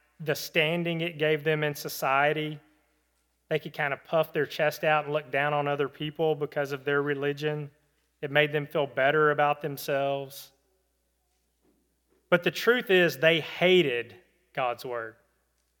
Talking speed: 150 wpm